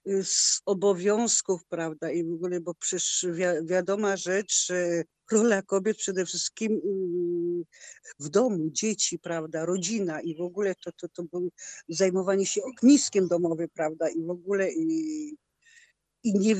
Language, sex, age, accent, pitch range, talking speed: Polish, female, 50-69, native, 180-240 Hz, 130 wpm